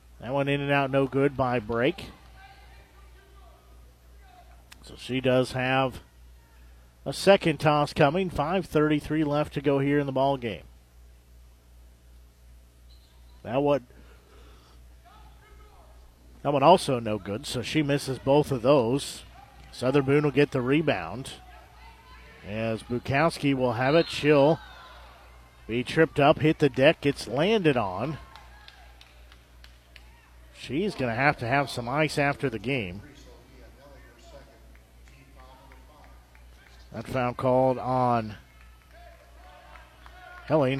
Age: 50-69